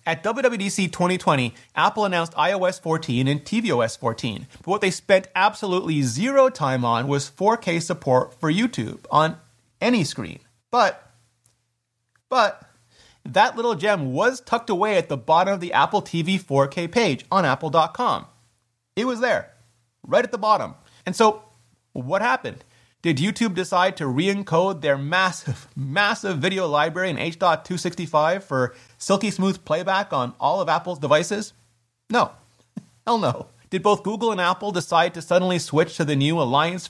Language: English